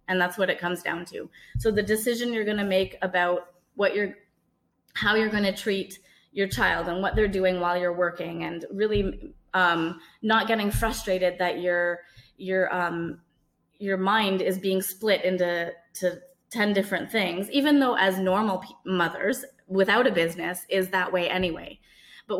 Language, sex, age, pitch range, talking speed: English, female, 20-39, 180-210 Hz, 175 wpm